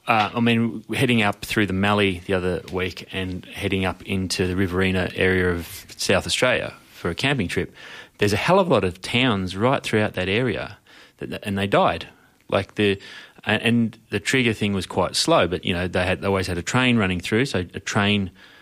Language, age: English, 20-39